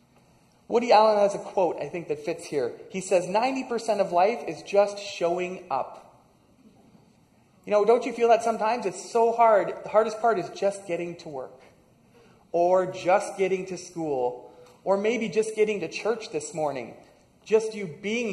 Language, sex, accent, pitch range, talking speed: English, male, American, 160-210 Hz, 175 wpm